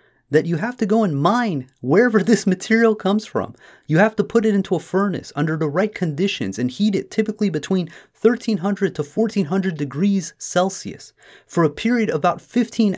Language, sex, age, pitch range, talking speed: English, male, 30-49, 150-210 Hz, 185 wpm